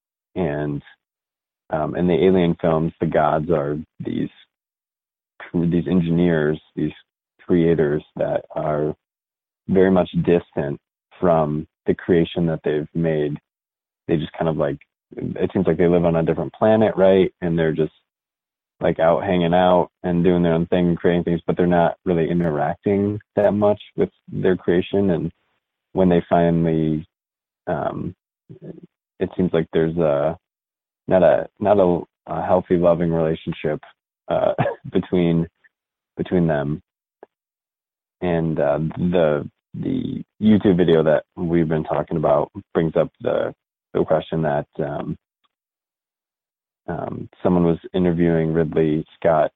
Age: 30-49